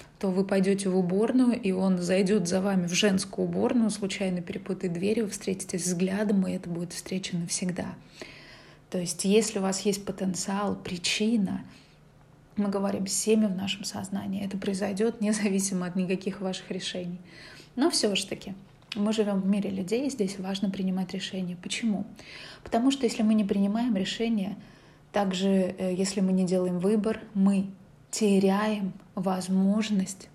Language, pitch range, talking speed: Russian, 185-205 Hz, 150 wpm